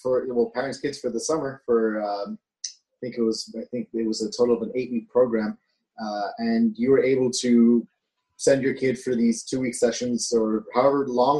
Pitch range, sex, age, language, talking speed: 115-140 Hz, male, 30-49, English, 205 wpm